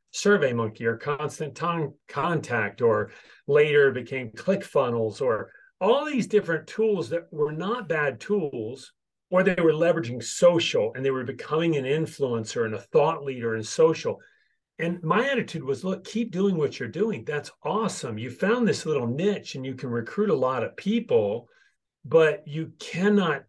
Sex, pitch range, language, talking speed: male, 135-215 Hz, English, 165 wpm